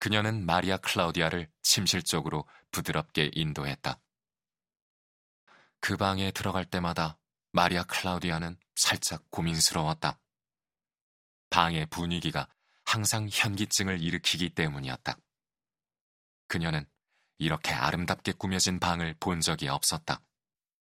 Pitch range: 80-100 Hz